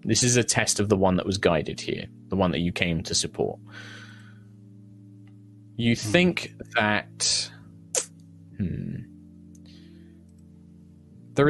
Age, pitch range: 20-39, 95-120 Hz